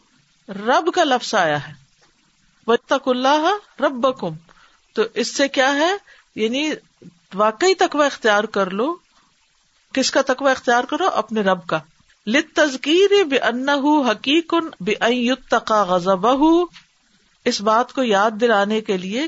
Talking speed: 125 wpm